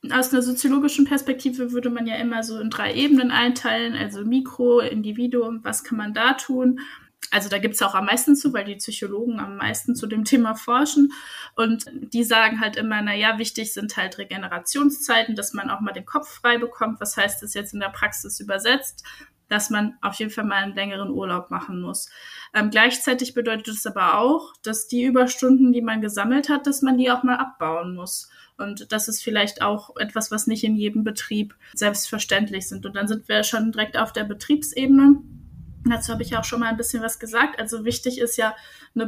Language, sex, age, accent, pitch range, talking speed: German, female, 20-39, German, 215-250 Hz, 205 wpm